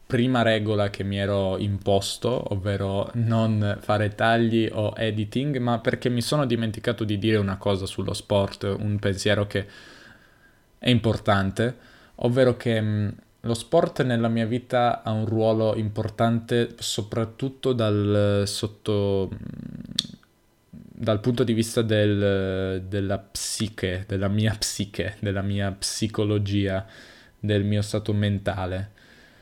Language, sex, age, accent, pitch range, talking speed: Italian, male, 10-29, native, 100-115 Hz, 120 wpm